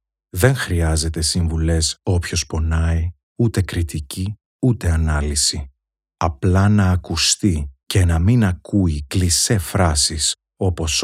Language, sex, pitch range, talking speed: Greek, male, 80-95 Hz, 105 wpm